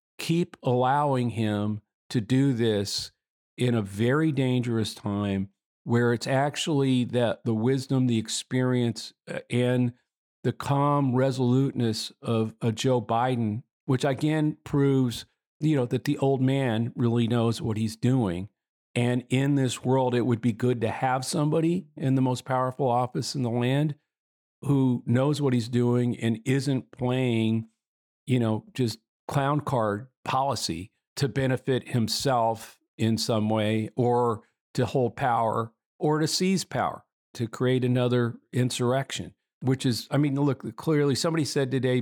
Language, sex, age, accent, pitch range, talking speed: English, male, 50-69, American, 115-135 Hz, 145 wpm